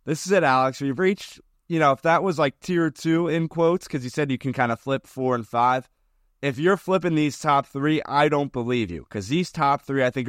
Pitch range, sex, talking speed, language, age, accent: 125-165 Hz, male, 250 wpm, English, 30-49, American